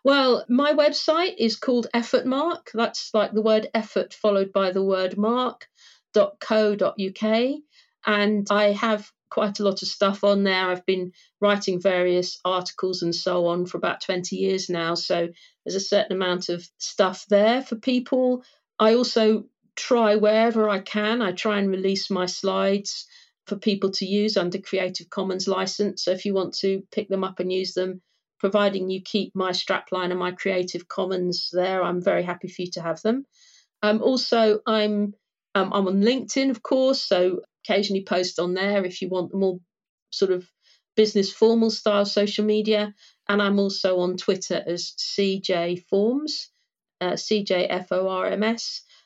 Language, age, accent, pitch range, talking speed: English, 50-69, British, 185-215 Hz, 165 wpm